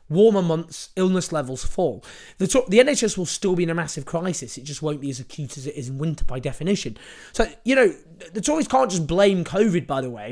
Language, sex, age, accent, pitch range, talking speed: English, male, 20-39, British, 135-190 Hz, 235 wpm